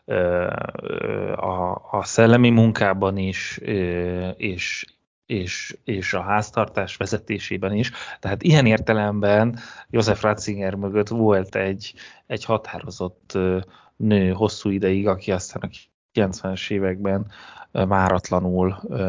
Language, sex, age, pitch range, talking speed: Hungarian, male, 30-49, 95-105 Hz, 100 wpm